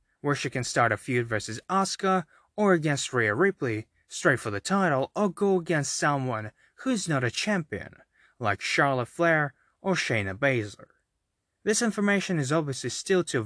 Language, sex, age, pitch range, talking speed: English, male, 20-39, 130-190 Hz, 165 wpm